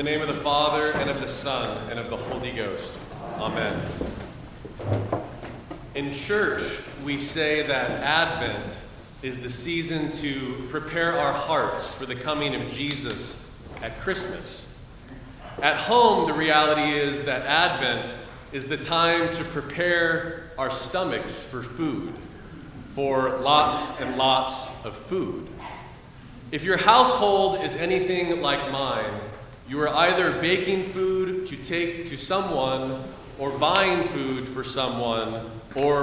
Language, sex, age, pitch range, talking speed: English, male, 30-49, 130-170 Hz, 130 wpm